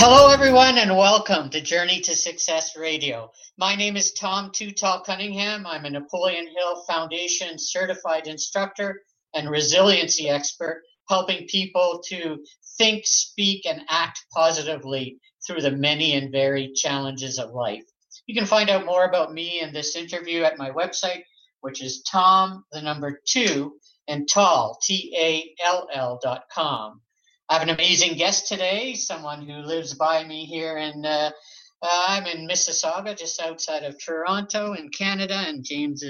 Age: 50-69